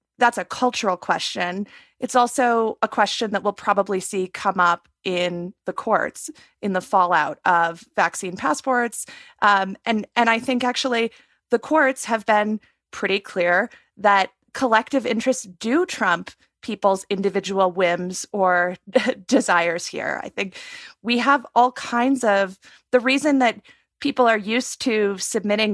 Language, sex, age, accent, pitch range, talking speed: English, female, 30-49, American, 195-250 Hz, 140 wpm